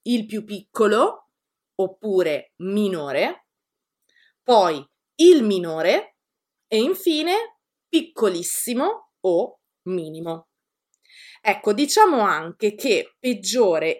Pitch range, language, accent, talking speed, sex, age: 180-260 Hz, Italian, native, 75 wpm, female, 30-49